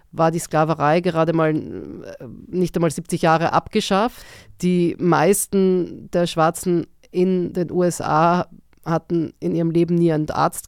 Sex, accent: female, German